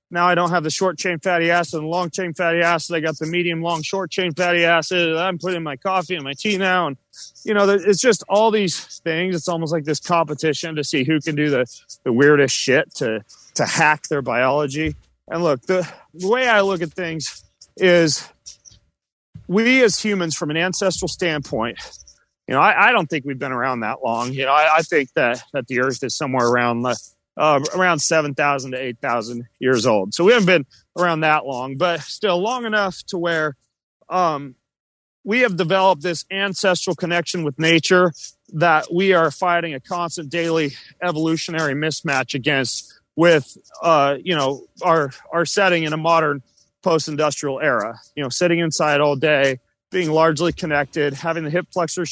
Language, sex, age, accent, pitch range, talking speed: English, male, 30-49, American, 140-180 Hz, 190 wpm